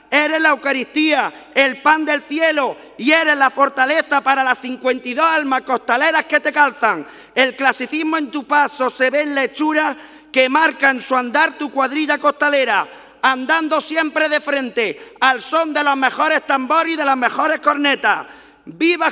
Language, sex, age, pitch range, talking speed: Spanish, male, 40-59, 260-305 Hz, 165 wpm